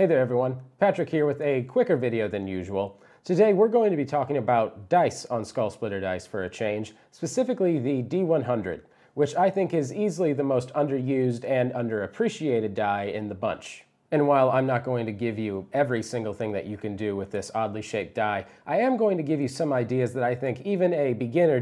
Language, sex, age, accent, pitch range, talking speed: English, male, 30-49, American, 110-150 Hz, 215 wpm